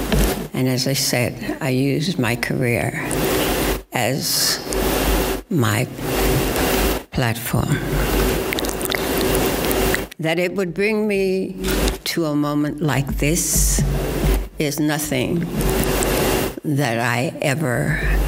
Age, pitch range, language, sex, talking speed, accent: 60-79, 135-165 Hz, English, female, 85 wpm, American